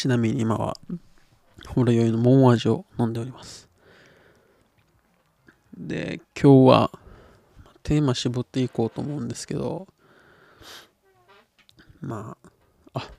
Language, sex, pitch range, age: Japanese, male, 115-140 Hz, 20-39